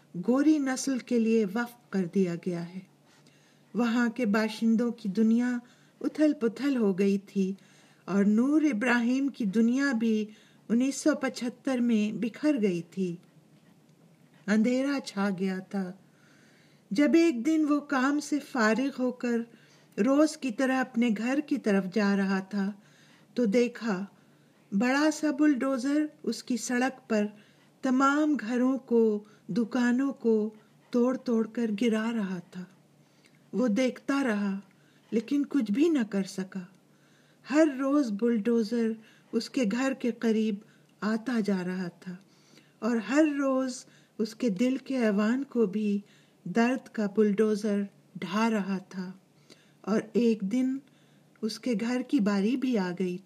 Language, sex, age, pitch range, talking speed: English, female, 50-69, 200-260 Hz, 130 wpm